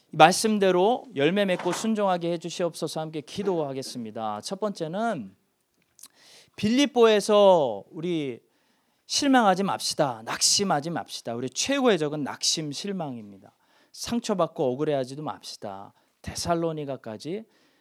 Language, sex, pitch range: Korean, male, 140-210 Hz